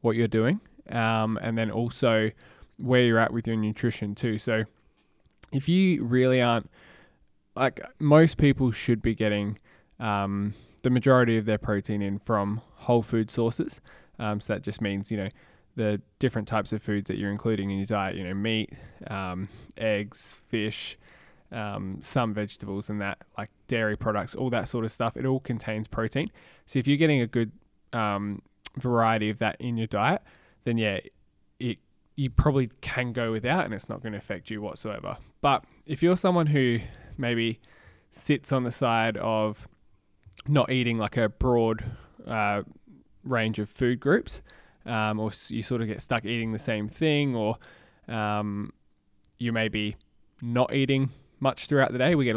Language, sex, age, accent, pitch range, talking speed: English, male, 20-39, Australian, 105-125 Hz, 175 wpm